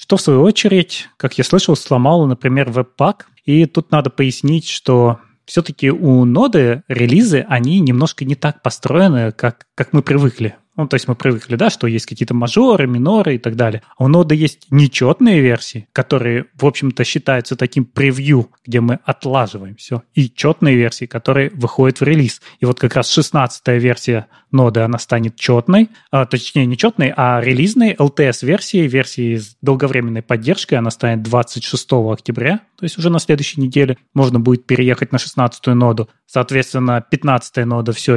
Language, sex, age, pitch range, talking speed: Russian, male, 20-39, 125-155 Hz, 170 wpm